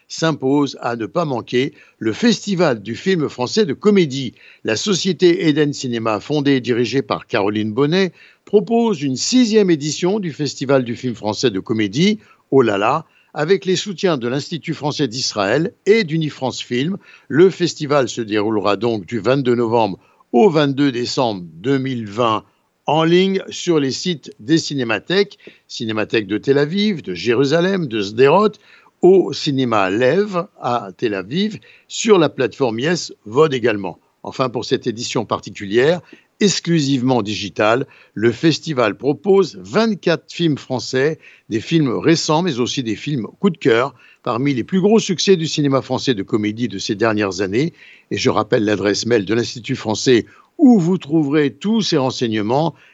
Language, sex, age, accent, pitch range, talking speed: French, male, 60-79, French, 120-170 Hz, 155 wpm